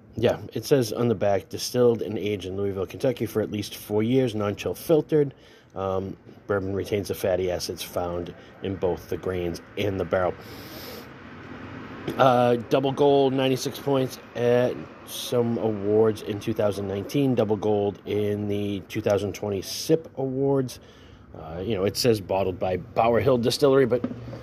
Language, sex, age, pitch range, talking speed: English, male, 30-49, 100-125 Hz, 150 wpm